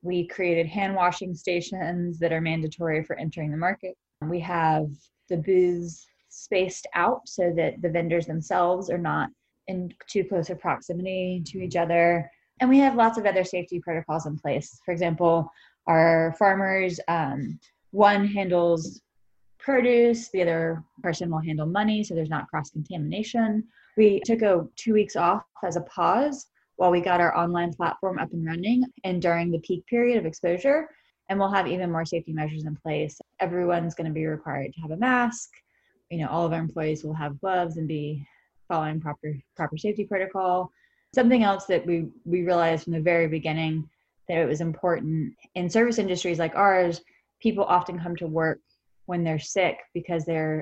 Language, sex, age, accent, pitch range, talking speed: English, female, 20-39, American, 160-190 Hz, 180 wpm